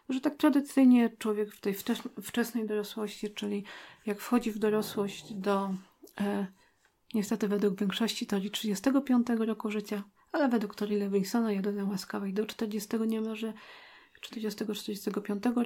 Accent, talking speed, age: native, 125 wpm, 40-59